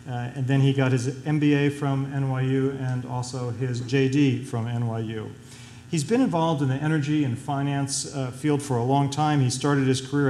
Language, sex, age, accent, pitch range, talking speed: English, male, 40-59, American, 125-140 Hz, 190 wpm